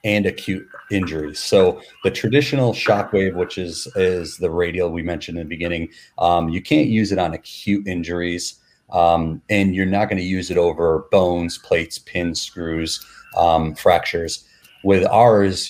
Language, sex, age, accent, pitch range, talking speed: English, male, 30-49, American, 85-95 Hz, 160 wpm